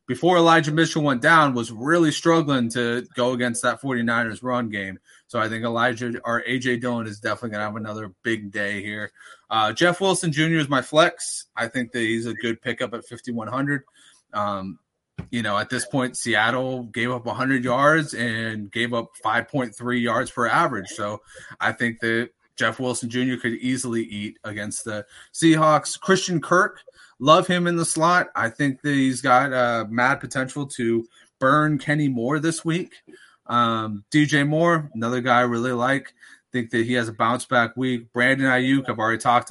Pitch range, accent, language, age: 115-140 Hz, American, English, 30-49